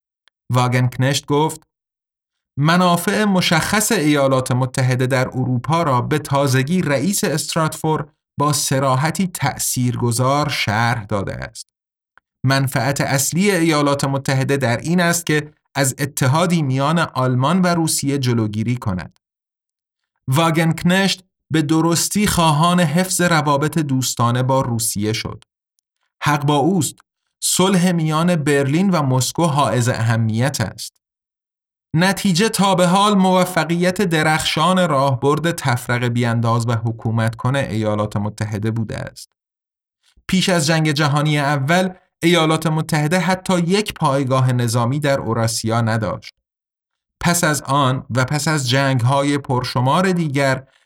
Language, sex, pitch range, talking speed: Persian, male, 130-165 Hz, 115 wpm